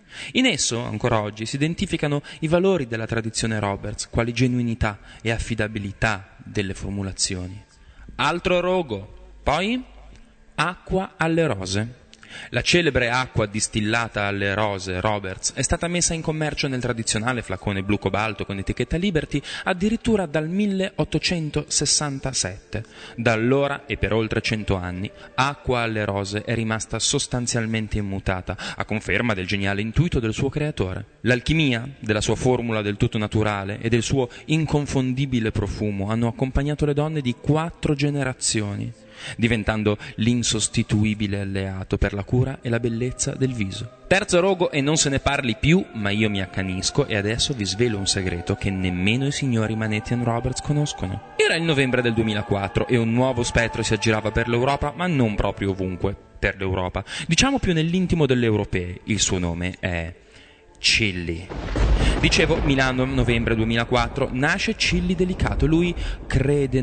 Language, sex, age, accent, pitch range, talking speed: Italian, male, 20-39, native, 105-140 Hz, 145 wpm